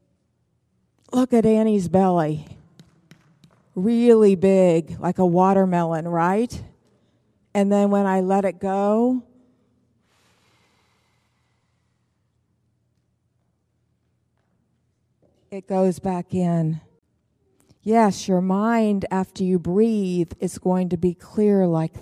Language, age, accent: English, 50-69, American